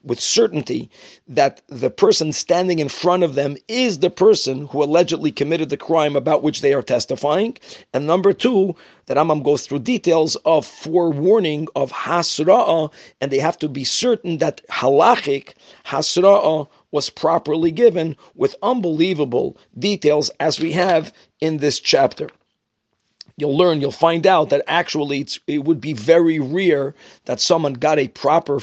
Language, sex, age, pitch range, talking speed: English, male, 50-69, 145-175 Hz, 155 wpm